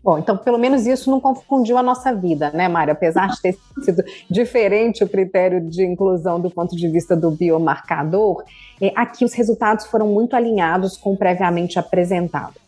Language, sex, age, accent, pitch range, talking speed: Portuguese, female, 30-49, Brazilian, 185-235 Hz, 175 wpm